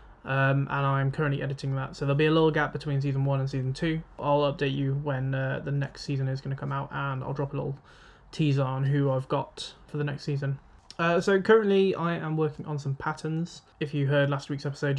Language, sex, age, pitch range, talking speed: English, male, 20-39, 135-155 Hz, 240 wpm